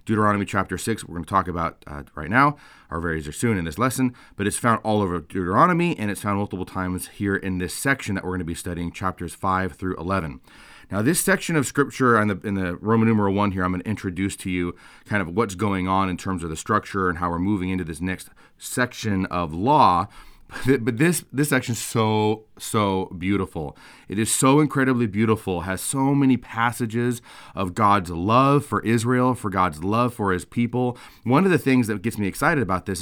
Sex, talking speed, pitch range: male, 215 wpm, 95-130 Hz